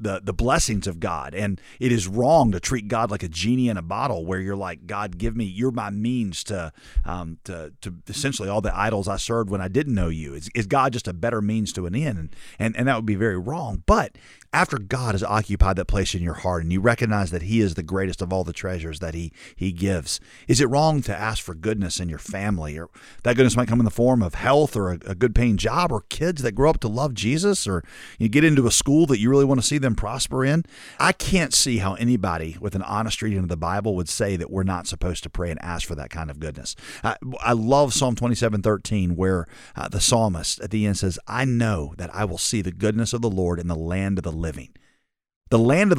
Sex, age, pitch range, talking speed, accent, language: male, 40-59, 90-120 Hz, 255 wpm, American, English